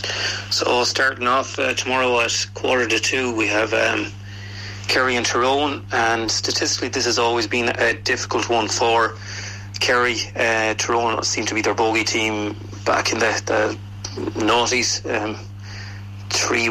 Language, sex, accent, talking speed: English, male, Irish, 145 wpm